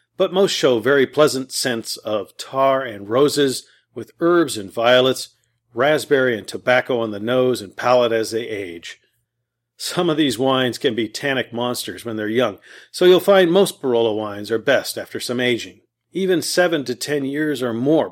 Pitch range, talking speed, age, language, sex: 115-150 Hz, 180 wpm, 40-59, English, male